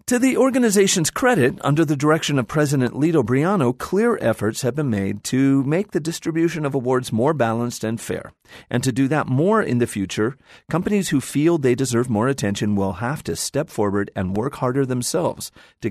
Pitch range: 105-150 Hz